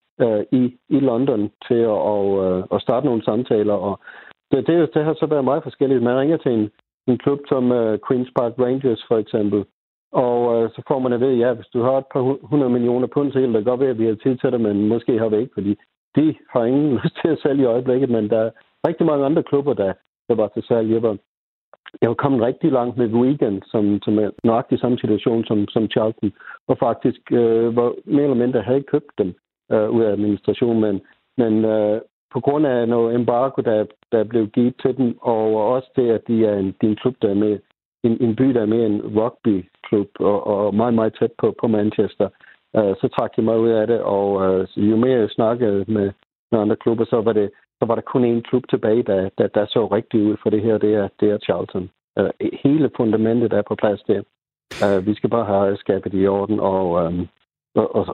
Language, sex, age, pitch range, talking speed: Danish, male, 50-69, 105-125 Hz, 225 wpm